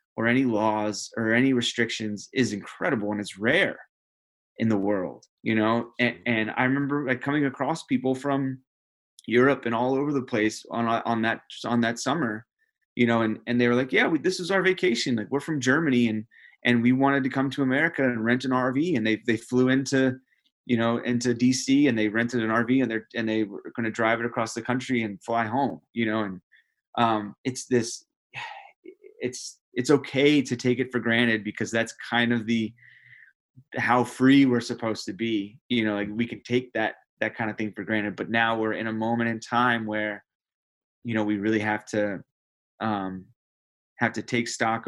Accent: American